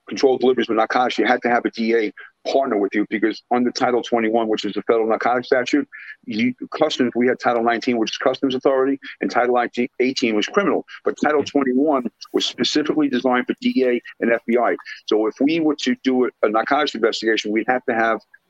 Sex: male